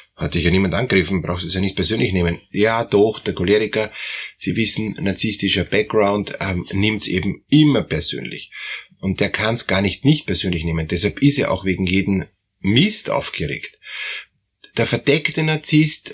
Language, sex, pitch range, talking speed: German, male, 100-130 Hz, 170 wpm